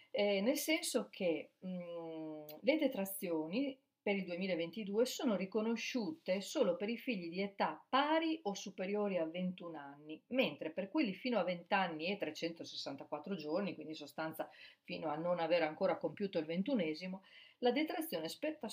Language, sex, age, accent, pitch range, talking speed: Italian, female, 40-59, native, 165-205 Hz, 155 wpm